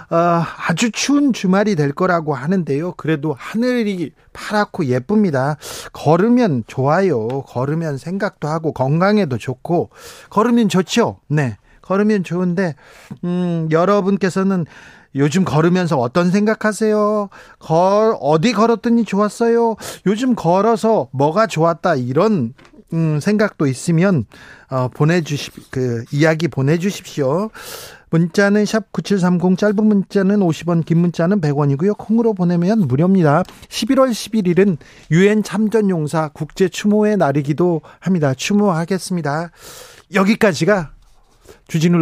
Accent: native